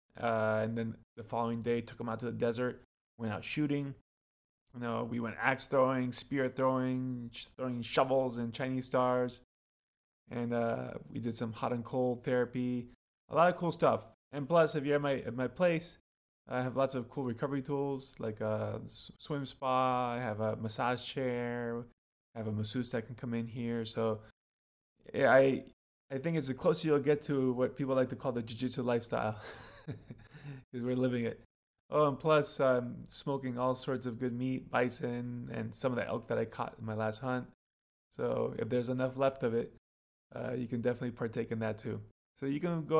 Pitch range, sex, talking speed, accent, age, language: 115-135 Hz, male, 195 wpm, American, 20-39, English